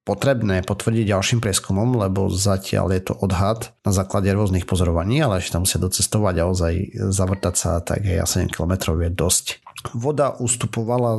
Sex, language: male, Slovak